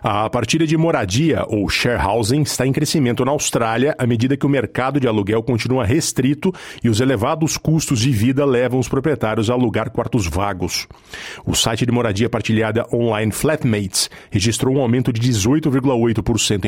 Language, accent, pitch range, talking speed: Portuguese, Brazilian, 110-135 Hz, 165 wpm